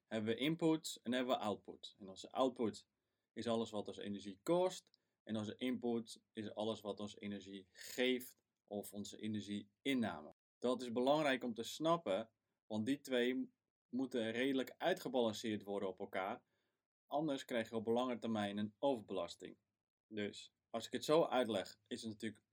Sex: male